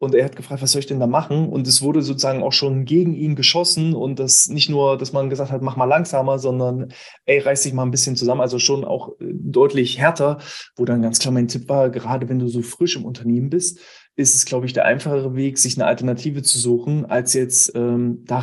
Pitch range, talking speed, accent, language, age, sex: 125-155 Hz, 240 wpm, German, German, 20-39, male